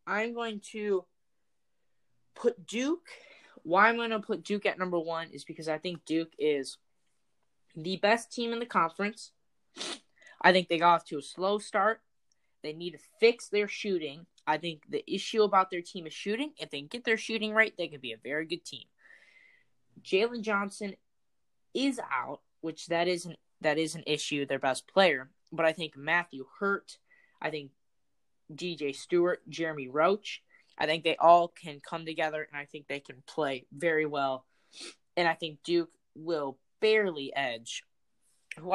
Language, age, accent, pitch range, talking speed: English, 10-29, American, 150-200 Hz, 170 wpm